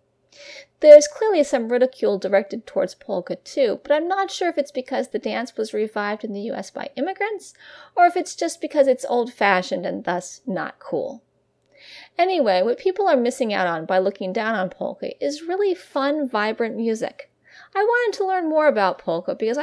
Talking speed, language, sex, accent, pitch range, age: 185 wpm, English, female, American, 205-300 Hz, 30-49